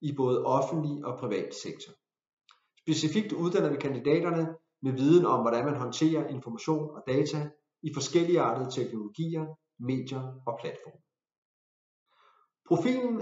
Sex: male